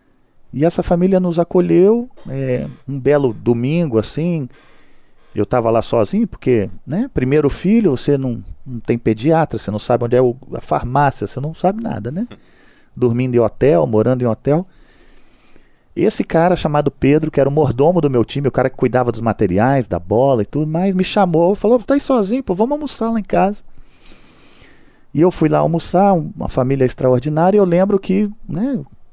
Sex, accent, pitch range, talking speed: male, Brazilian, 130-175 Hz, 180 wpm